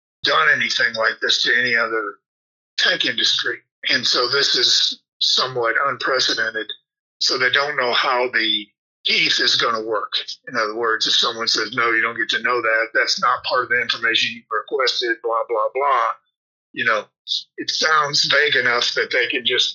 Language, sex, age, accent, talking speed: English, male, 50-69, American, 180 wpm